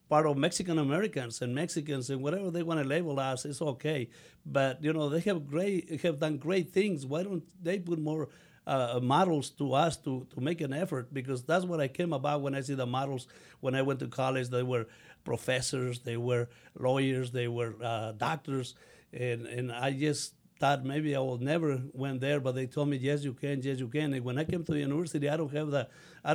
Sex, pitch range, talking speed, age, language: male, 130-150 Hz, 220 wpm, 60-79, English